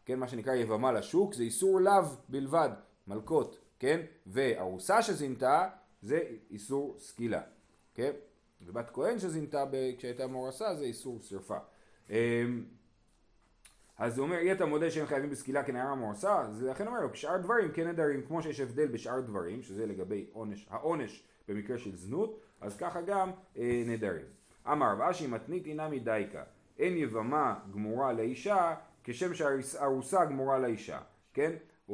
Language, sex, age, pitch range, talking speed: Hebrew, male, 30-49, 110-150 Hz, 145 wpm